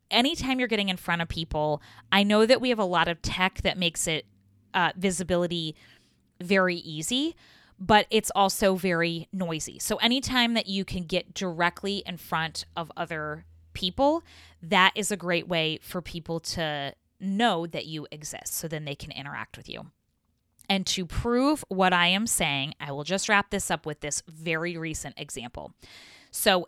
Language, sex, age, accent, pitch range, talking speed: English, female, 20-39, American, 165-205 Hz, 175 wpm